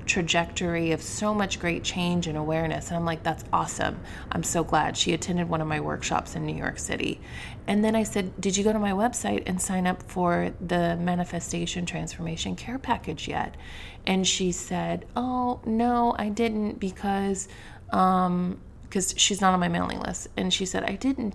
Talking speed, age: 190 wpm, 30-49